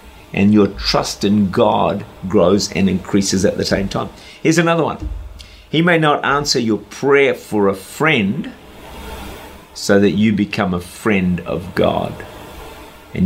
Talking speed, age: 150 wpm, 50-69